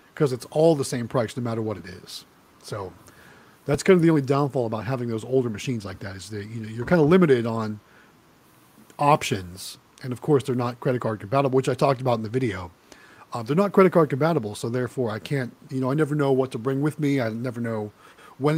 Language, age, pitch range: English, 40-59, 120-160 Hz